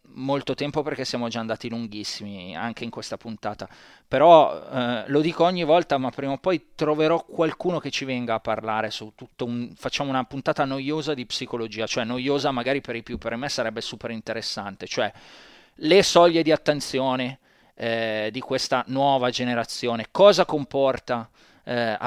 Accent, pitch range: native, 115-140 Hz